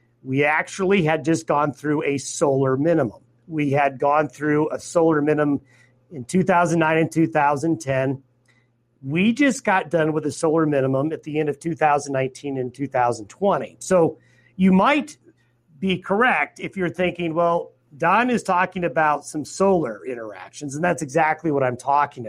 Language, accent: English, American